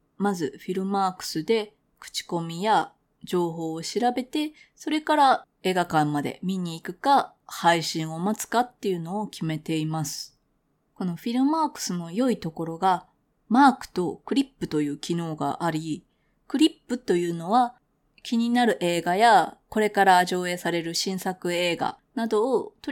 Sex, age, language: female, 20-39, Japanese